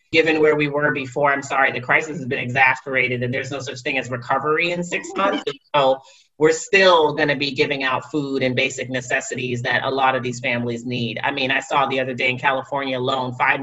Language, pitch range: English, 130-150 Hz